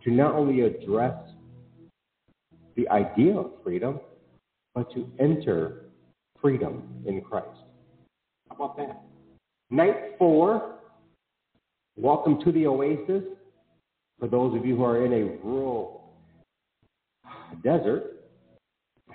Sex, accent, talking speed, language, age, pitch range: male, American, 105 wpm, English, 50-69, 95-125 Hz